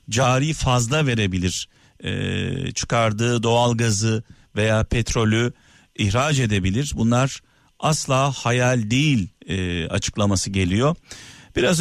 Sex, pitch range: male, 120-165 Hz